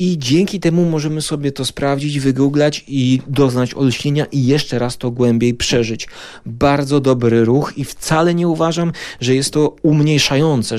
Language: Polish